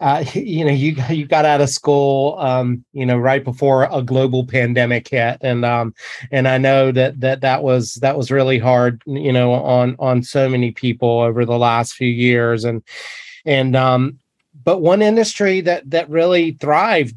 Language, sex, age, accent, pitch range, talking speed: English, male, 30-49, American, 130-155 Hz, 185 wpm